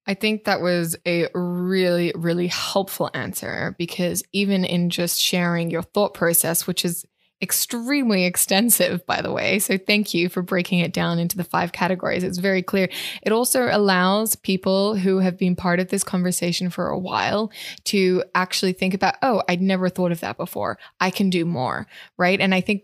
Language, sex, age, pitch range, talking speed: English, female, 20-39, 180-205 Hz, 185 wpm